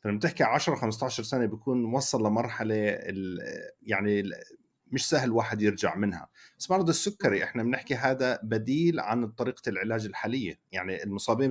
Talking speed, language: 140 wpm, Arabic